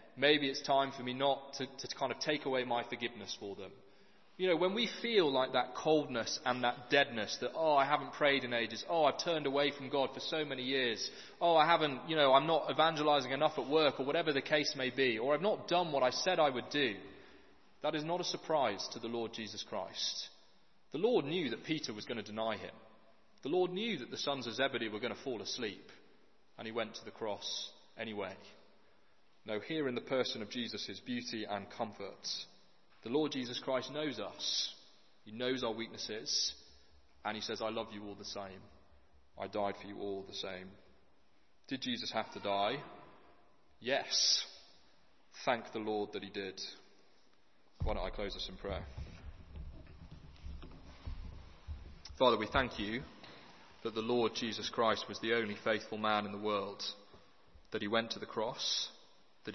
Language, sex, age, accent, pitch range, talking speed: English, male, 20-39, British, 100-140 Hz, 195 wpm